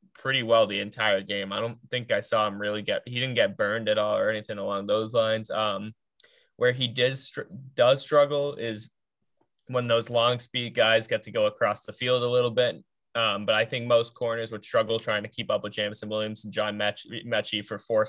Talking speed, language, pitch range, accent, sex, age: 215 wpm, English, 105-125 Hz, American, male, 10-29